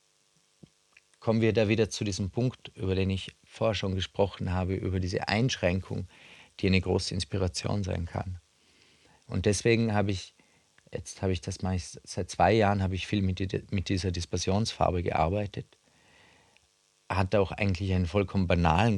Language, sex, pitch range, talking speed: German, male, 90-105 Hz, 160 wpm